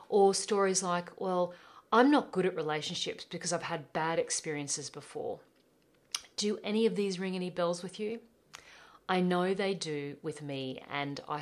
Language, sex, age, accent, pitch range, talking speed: English, female, 40-59, Australian, 160-195 Hz, 170 wpm